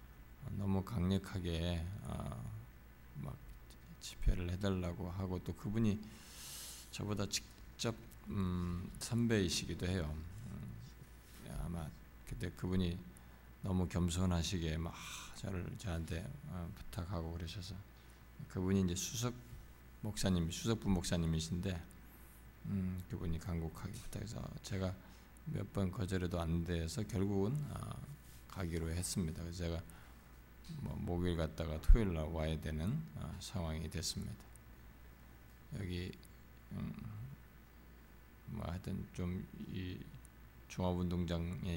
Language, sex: Korean, male